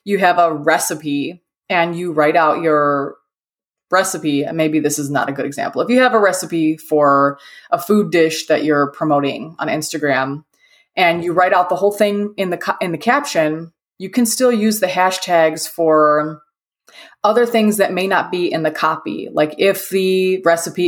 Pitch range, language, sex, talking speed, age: 155-195 Hz, English, female, 185 wpm, 20-39